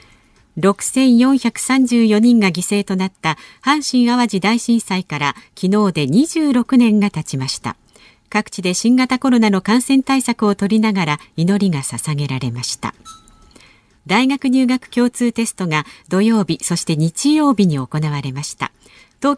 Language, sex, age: Japanese, female, 50-69